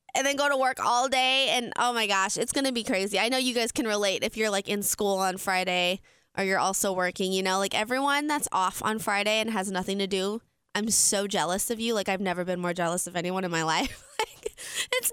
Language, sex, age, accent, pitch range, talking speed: English, female, 20-39, American, 195-290 Hz, 255 wpm